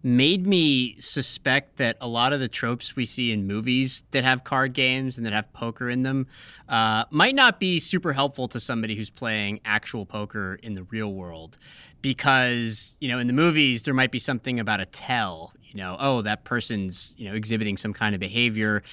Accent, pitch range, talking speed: American, 105-135 Hz, 205 wpm